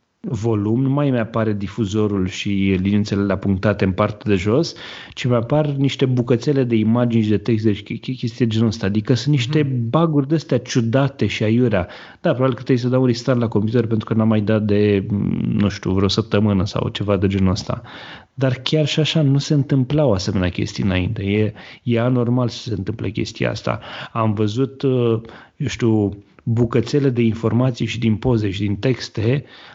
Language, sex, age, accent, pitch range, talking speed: Romanian, male, 30-49, native, 105-125 Hz, 180 wpm